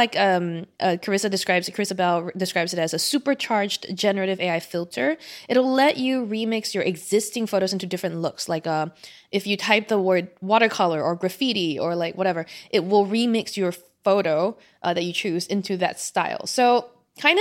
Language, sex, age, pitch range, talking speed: English, female, 20-39, 175-225 Hz, 180 wpm